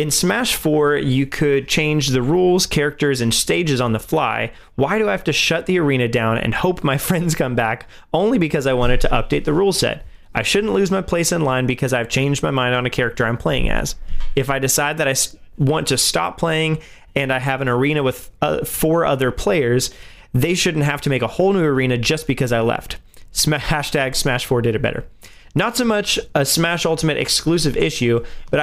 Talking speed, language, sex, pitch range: 215 wpm, English, male, 125-160 Hz